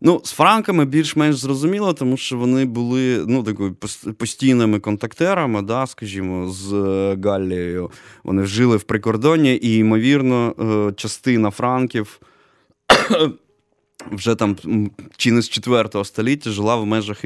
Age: 20-39